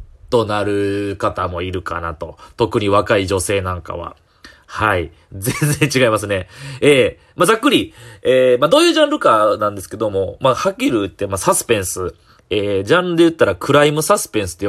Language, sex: Japanese, male